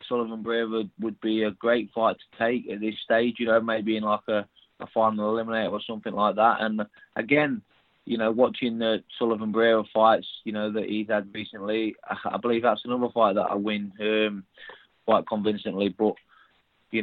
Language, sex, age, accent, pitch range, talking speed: English, male, 20-39, British, 100-115 Hz, 190 wpm